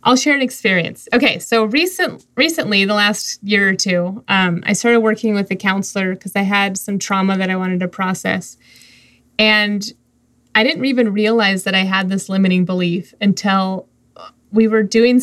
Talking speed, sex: 175 wpm, female